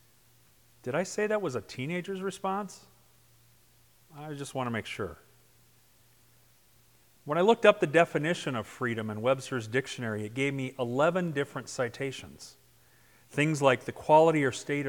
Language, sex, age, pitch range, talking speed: English, male, 40-59, 115-140 Hz, 150 wpm